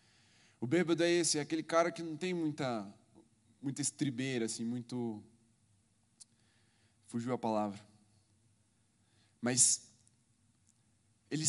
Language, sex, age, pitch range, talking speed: Portuguese, male, 10-29, 115-145 Hz, 105 wpm